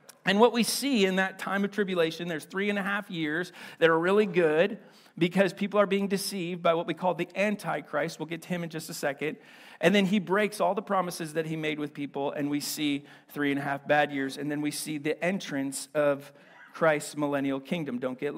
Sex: male